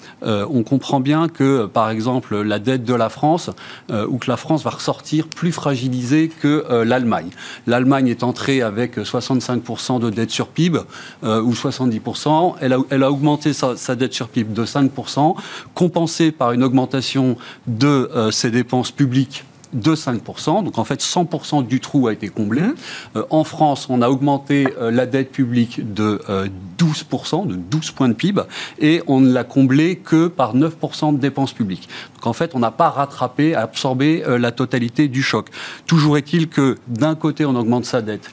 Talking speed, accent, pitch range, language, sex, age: 180 wpm, French, 120-150 Hz, French, male, 30-49